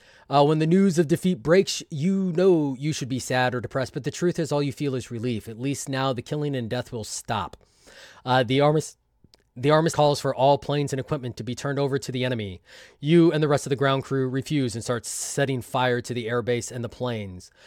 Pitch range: 120-150 Hz